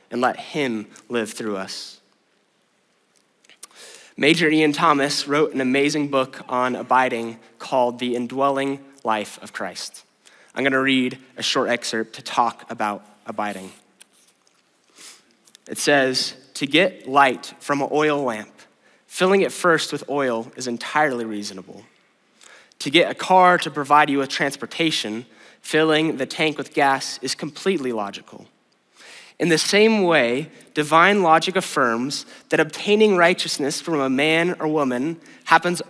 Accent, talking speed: American, 135 wpm